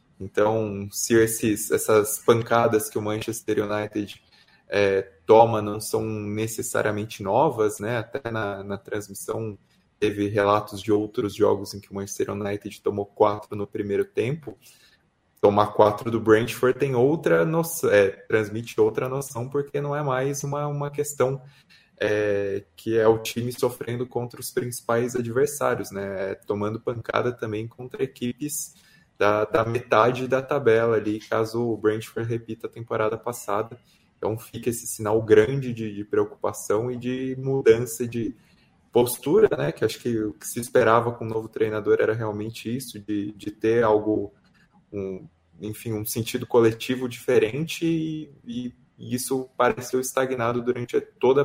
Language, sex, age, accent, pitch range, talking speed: Portuguese, male, 20-39, Brazilian, 105-125 Hz, 145 wpm